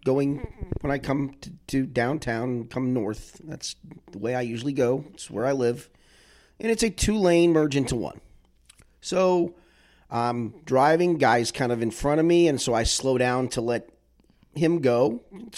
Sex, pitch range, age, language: male, 120-175 Hz, 30-49, English